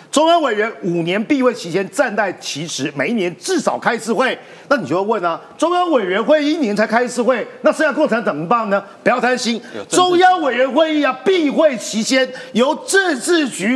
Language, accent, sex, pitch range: Chinese, native, male, 210-300 Hz